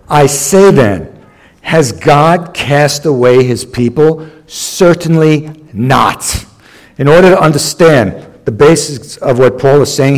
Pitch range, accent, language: 135-170 Hz, American, English